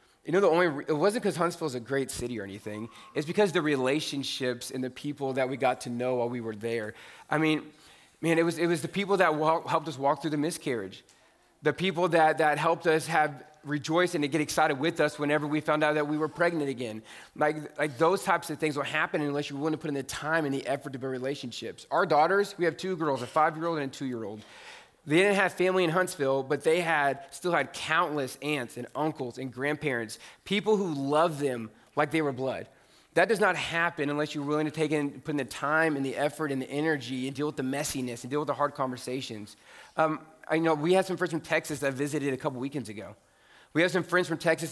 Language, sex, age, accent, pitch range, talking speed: English, male, 20-39, American, 135-160 Hz, 245 wpm